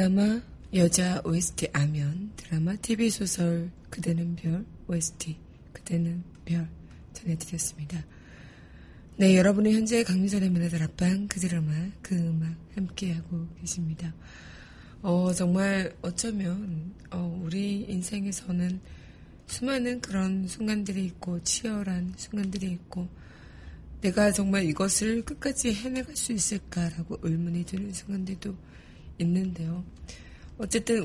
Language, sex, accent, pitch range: Korean, female, native, 170-205 Hz